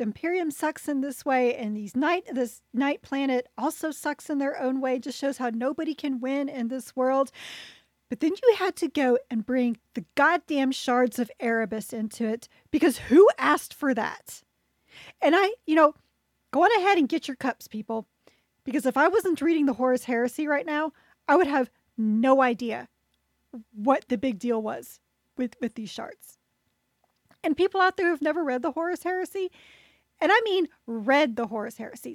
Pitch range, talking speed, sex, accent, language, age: 235-300 Hz, 185 wpm, female, American, English, 40-59